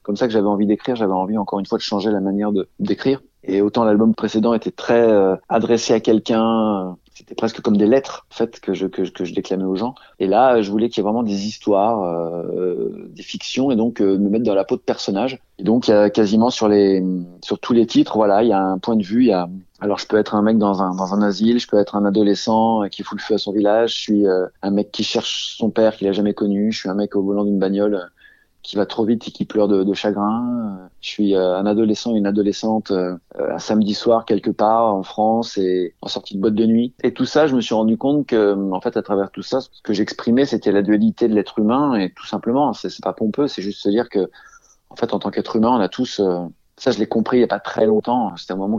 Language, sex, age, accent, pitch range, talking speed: French, male, 20-39, French, 100-115 Hz, 270 wpm